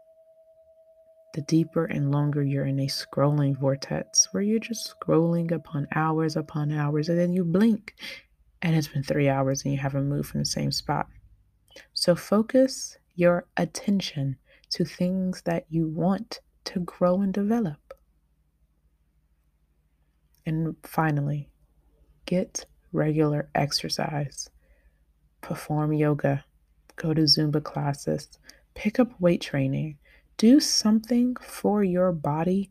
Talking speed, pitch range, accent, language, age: 125 wpm, 140-180 Hz, American, English, 20-39